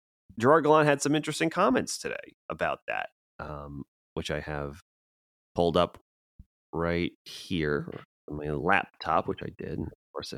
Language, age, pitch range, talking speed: English, 30-49, 70-100 Hz, 145 wpm